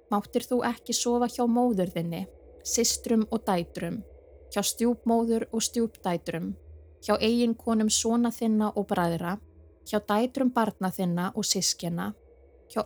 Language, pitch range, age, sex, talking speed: English, 190-245 Hz, 20-39, female, 140 wpm